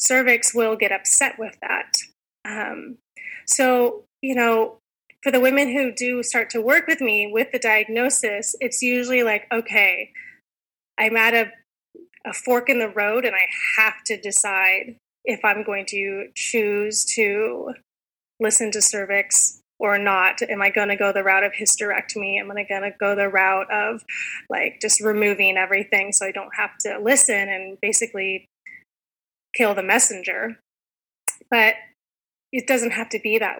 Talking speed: 160 wpm